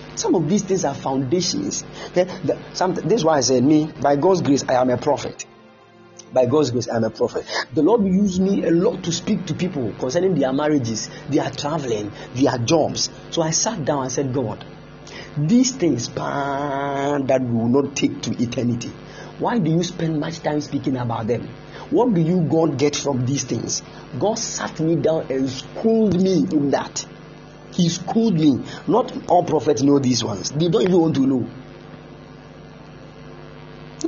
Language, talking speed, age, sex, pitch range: English, 175 wpm, 50-69, male, 135-180 Hz